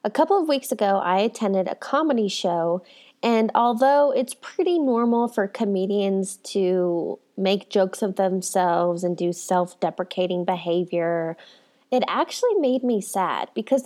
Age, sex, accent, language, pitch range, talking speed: 20-39, female, American, English, 195-255 Hz, 140 wpm